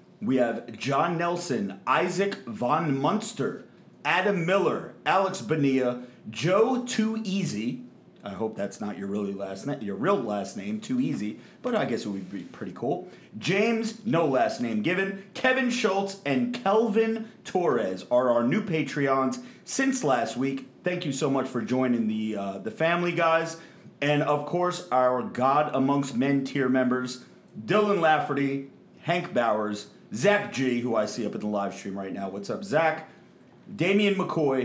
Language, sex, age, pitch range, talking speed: English, male, 40-59, 125-190 Hz, 165 wpm